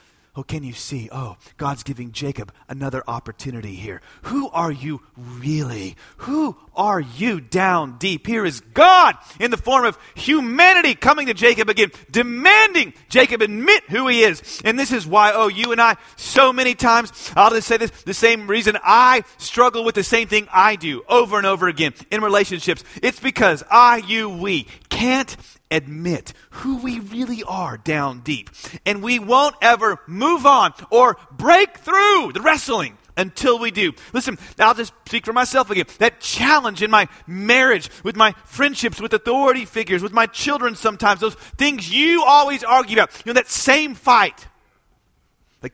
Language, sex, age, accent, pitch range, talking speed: English, male, 40-59, American, 150-250 Hz, 170 wpm